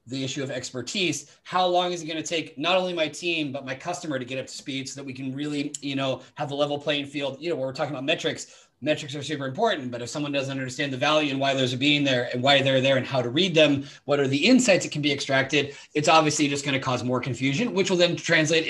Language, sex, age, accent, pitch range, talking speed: English, male, 30-49, American, 130-175 Hz, 280 wpm